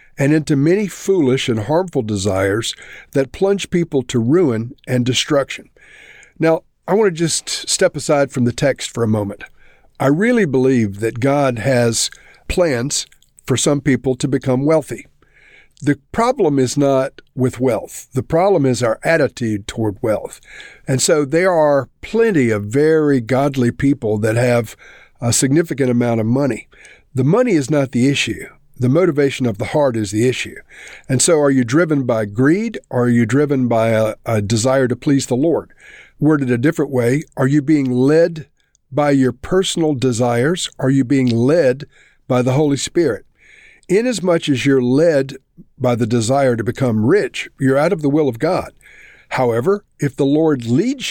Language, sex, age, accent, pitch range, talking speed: English, male, 50-69, American, 125-155 Hz, 170 wpm